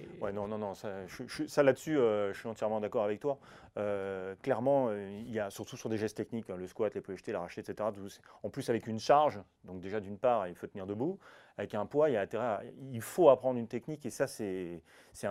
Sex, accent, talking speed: male, French, 250 wpm